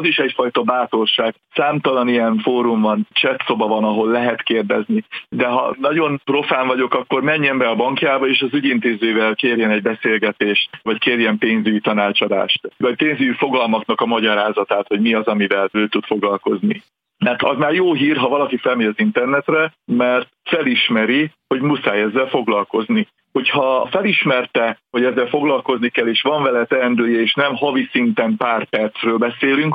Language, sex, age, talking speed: Hungarian, male, 50-69, 155 wpm